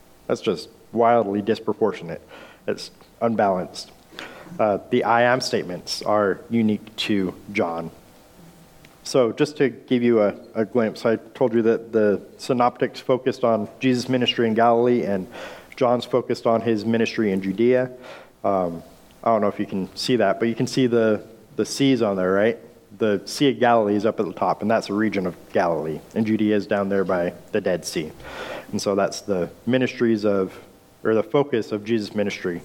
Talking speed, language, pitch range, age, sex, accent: 180 wpm, English, 105-125 Hz, 40-59, male, American